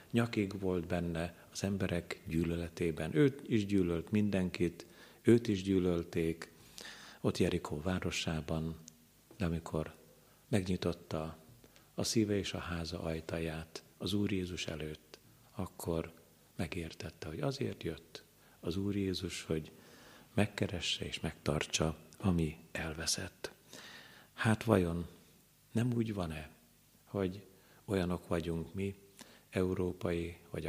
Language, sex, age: Hungarian, male, 50-69